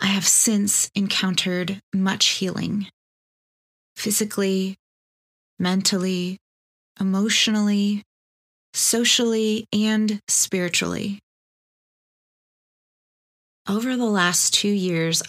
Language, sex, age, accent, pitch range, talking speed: English, female, 20-39, American, 180-210 Hz, 65 wpm